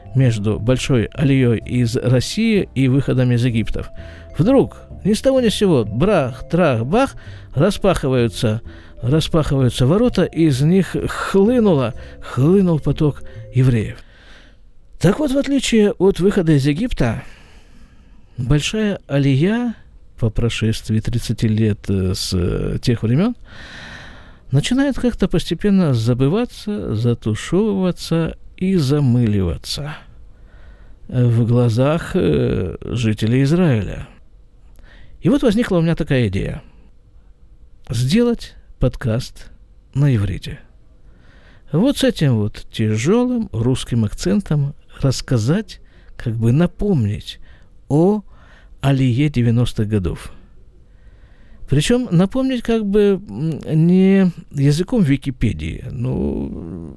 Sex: male